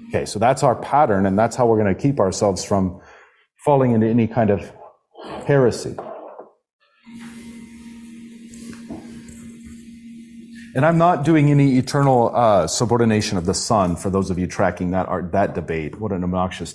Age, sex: 40-59, male